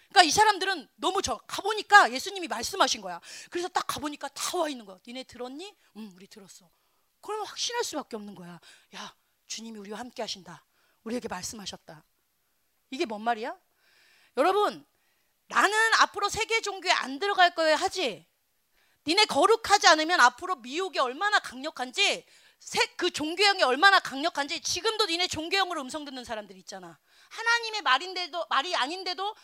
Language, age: Korean, 30-49